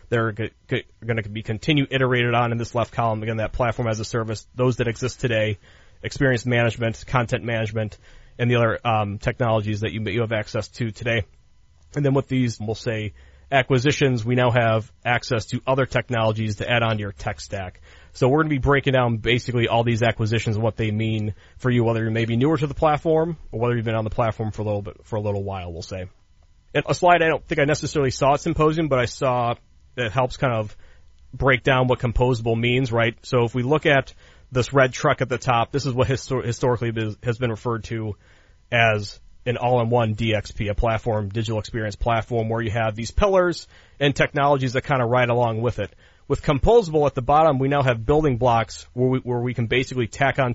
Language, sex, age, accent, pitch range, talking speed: English, male, 30-49, American, 110-130 Hz, 215 wpm